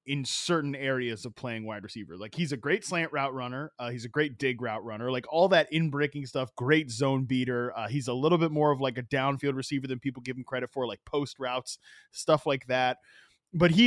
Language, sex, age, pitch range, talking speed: English, male, 20-39, 120-155 Hz, 235 wpm